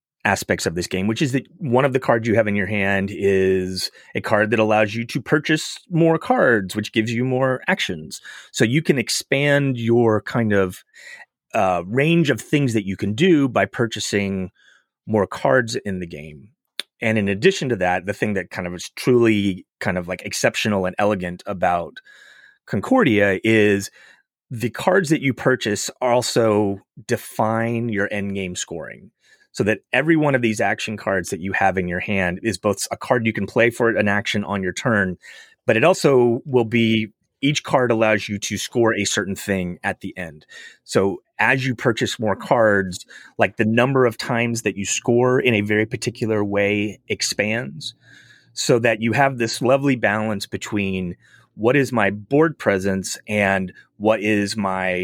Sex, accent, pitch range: male, American, 100-125 Hz